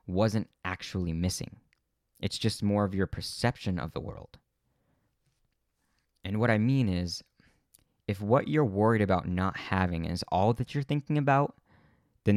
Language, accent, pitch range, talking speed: English, American, 95-120 Hz, 150 wpm